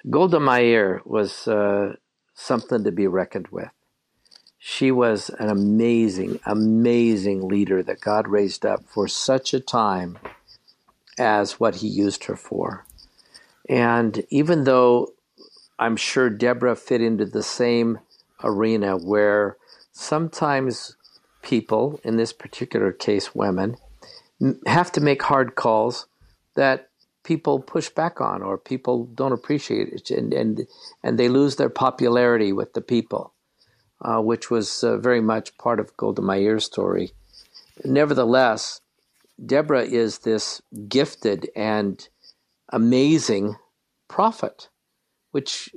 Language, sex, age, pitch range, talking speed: English, male, 50-69, 105-130 Hz, 125 wpm